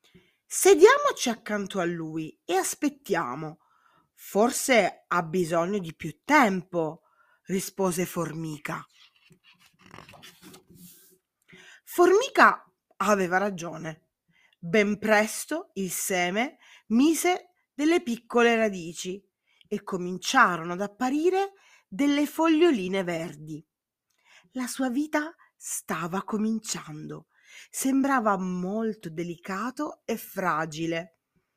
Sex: female